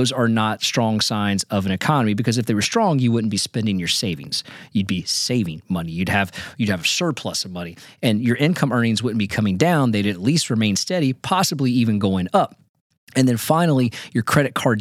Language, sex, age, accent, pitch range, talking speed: English, male, 30-49, American, 100-130 Hz, 225 wpm